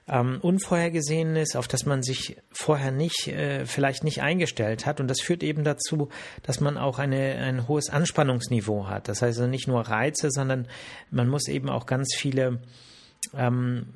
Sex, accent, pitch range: male, German, 125-145 Hz